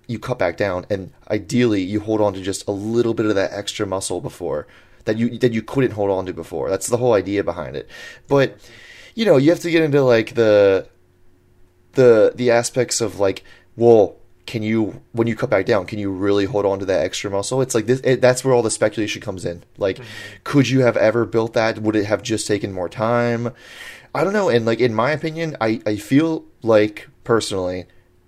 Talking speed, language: 220 wpm, English